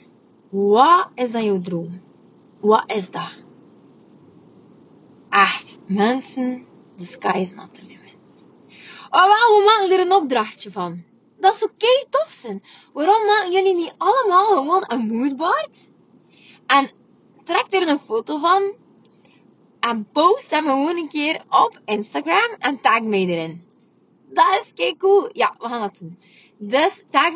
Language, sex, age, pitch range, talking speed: Dutch, female, 20-39, 215-360 Hz, 150 wpm